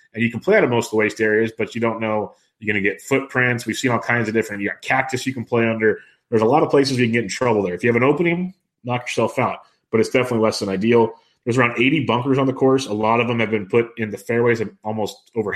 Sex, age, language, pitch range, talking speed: male, 30-49, English, 105-120 Hz, 300 wpm